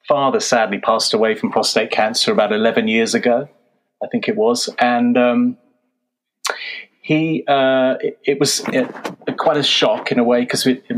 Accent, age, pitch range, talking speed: British, 30-49, 115-140 Hz, 170 wpm